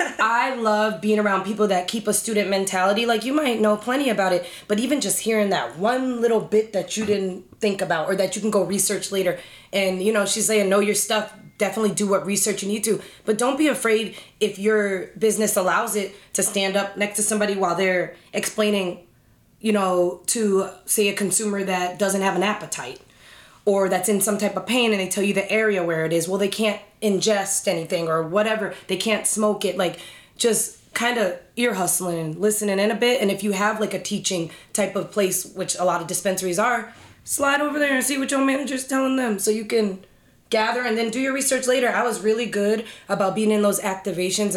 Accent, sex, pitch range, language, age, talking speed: American, female, 190-220 Hz, English, 20-39, 220 wpm